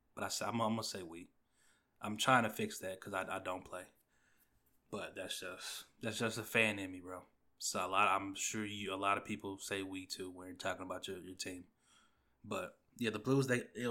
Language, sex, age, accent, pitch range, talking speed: English, male, 20-39, American, 105-130 Hz, 225 wpm